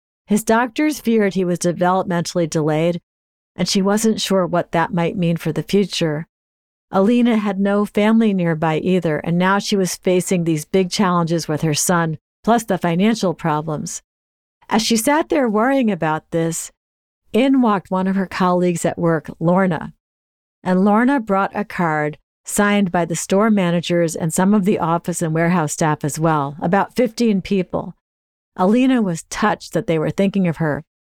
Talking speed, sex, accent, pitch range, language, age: 165 wpm, female, American, 165-210 Hz, English, 50-69